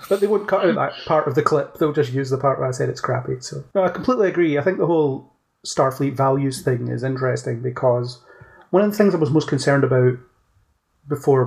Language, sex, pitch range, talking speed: English, male, 125-150 Hz, 235 wpm